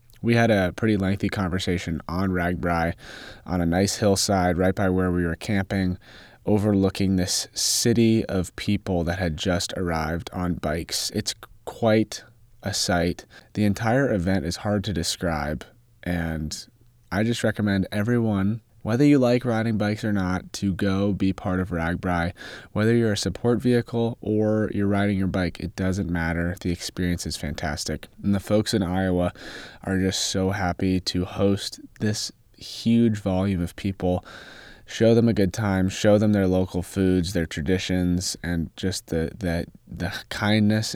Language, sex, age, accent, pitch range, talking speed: English, male, 20-39, American, 90-110 Hz, 160 wpm